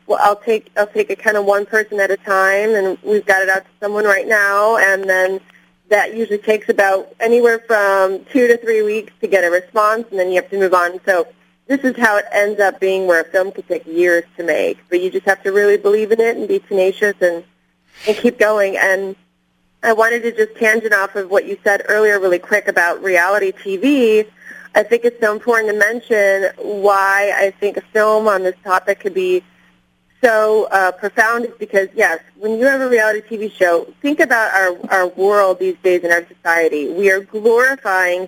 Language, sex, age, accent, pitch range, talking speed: English, female, 20-39, American, 185-220 Hz, 210 wpm